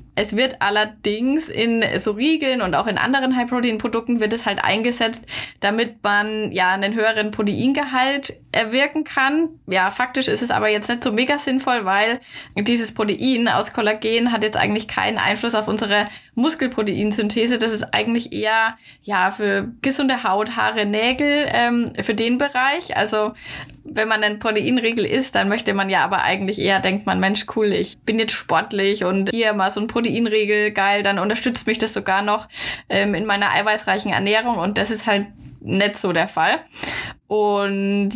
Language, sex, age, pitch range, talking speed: German, female, 20-39, 200-240 Hz, 170 wpm